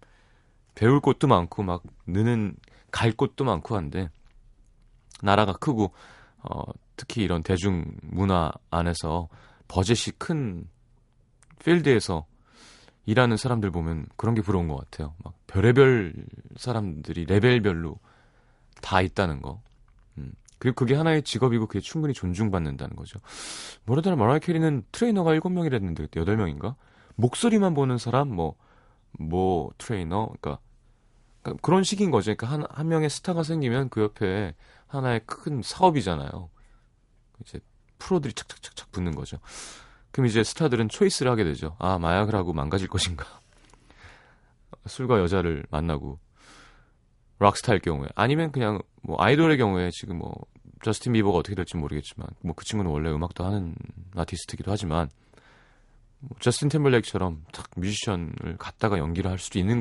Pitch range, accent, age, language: 90-130 Hz, native, 30-49, Korean